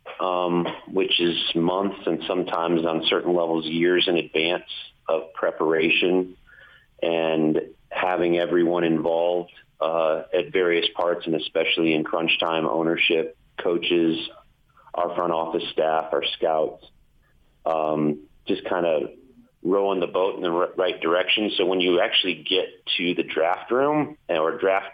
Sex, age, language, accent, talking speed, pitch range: male, 30-49, English, American, 140 wpm, 80-95 Hz